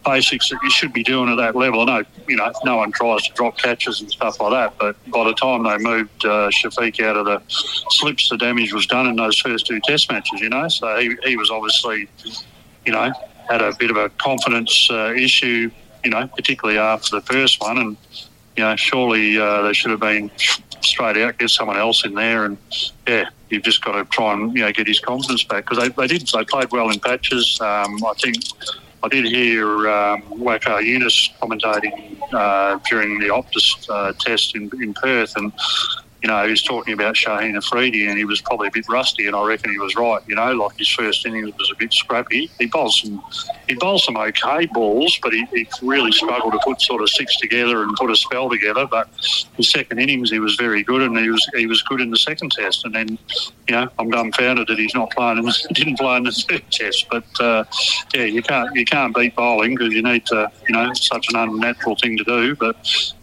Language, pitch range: English, 110-125 Hz